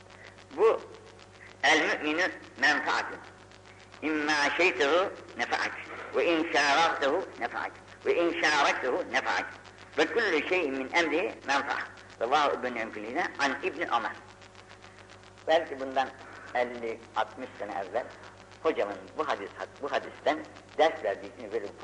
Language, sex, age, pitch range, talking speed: Turkish, female, 60-79, 95-130 Hz, 60 wpm